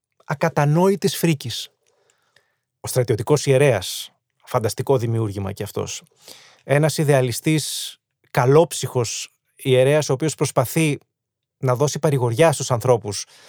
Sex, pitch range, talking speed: male, 130-170 Hz, 95 wpm